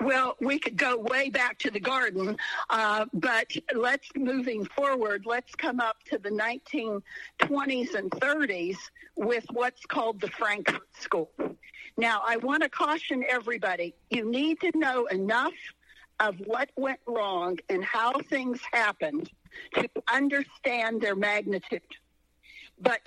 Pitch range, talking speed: 220-290 Hz, 135 wpm